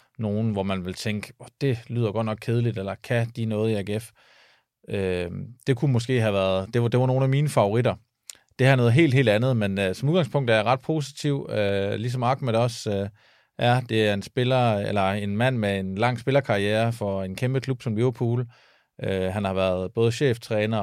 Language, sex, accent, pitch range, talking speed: Danish, male, native, 100-120 Hz, 215 wpm